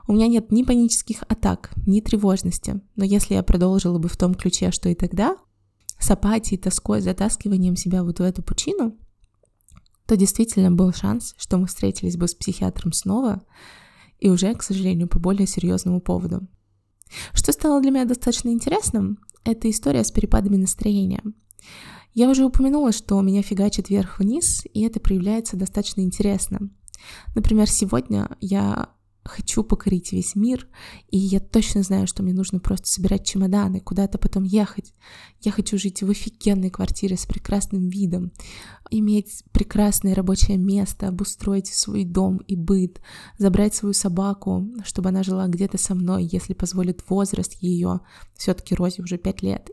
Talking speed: 155 wpm